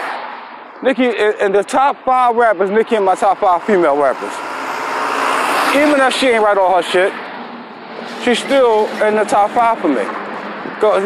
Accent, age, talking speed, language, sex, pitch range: American, 20-39, 165 wpm, English, male, 170-225 Hz